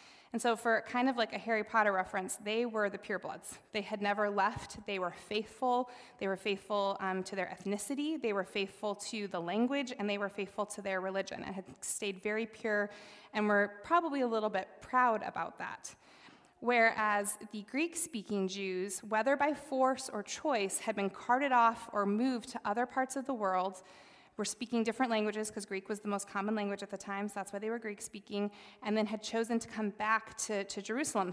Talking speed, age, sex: 205 wpm, 20-39, female